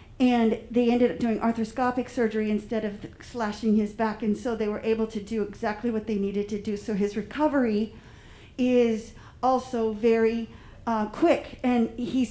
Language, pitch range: English, 220-250 Hz